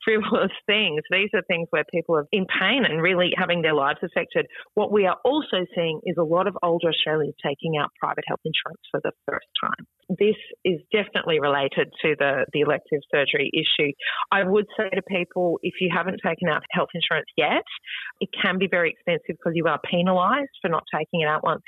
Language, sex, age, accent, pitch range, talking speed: English, female, 30-49, Australian, 160-205 Hz, 205 wpm